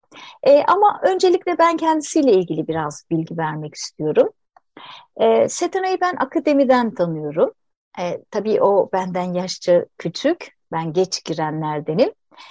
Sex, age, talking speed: female, 60-79, 115 wpm